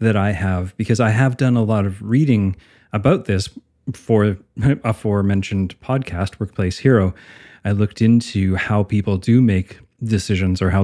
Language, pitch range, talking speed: English, 95-115 Hz, 155 wpm